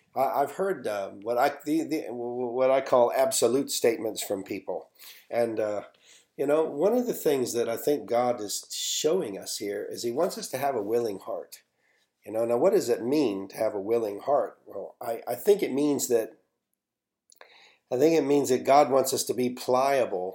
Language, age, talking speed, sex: English, 50-69, 205 wpm, male